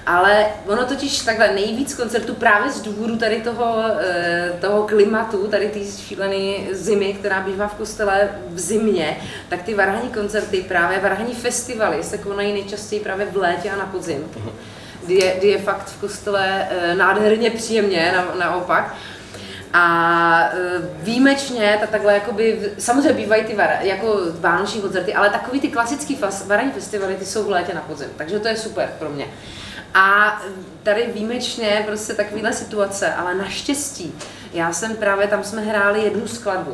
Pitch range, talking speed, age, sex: 185-215 Hz, 155 wpm, 30-49, female